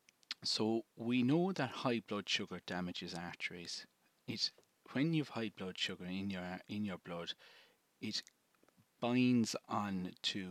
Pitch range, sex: 95-125 Hz, male